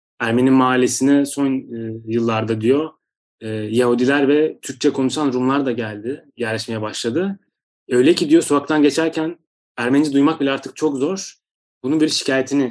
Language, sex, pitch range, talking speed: Turkish, male, 120-140 Hz, 130 wpm